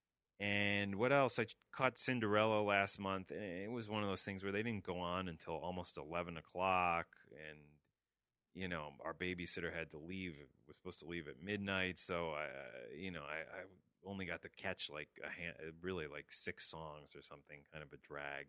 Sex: male